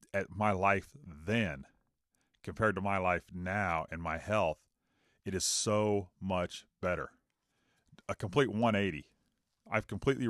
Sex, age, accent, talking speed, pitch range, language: male, 40-59, American, 130 wpm, 95-115 Hz, English